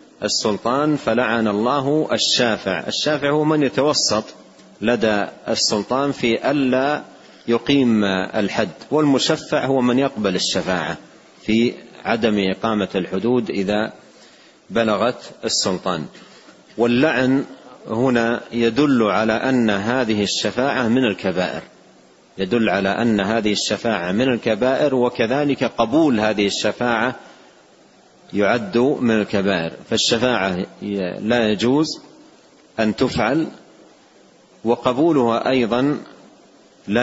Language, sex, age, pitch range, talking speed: Arabic, male, 40-59, 105-125 Hz, 90 wpm